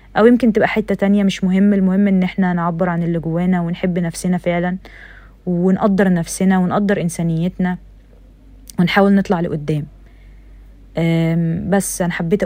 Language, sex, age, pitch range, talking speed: Arabic, female, 20-39, 175-205 Hz, 130 wpm